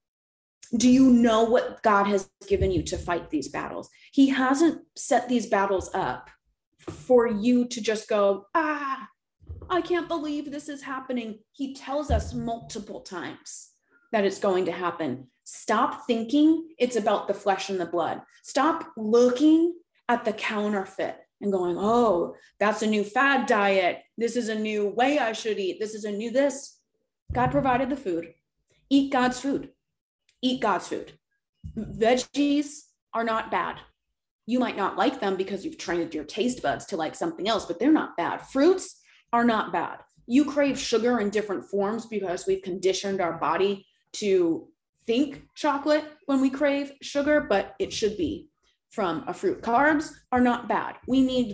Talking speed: 165 wpm